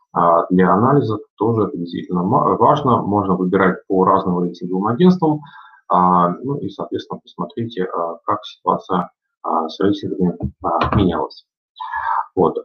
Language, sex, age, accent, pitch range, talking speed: Russian, male, 30-49, native, 85-115 Hz, 105 wpm